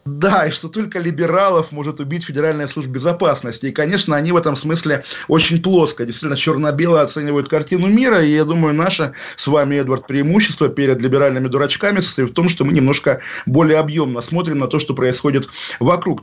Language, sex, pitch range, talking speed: Russian, male, 140-175 Hz, 180 wpm